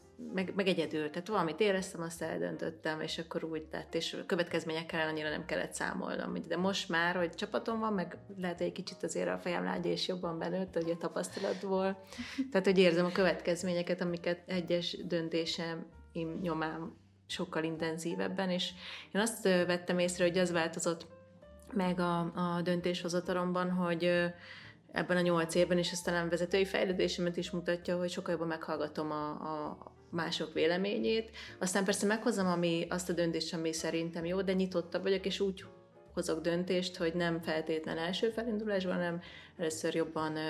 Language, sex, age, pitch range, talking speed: Hungarian, female, 30-49, 160-185 Hz, 155 wpm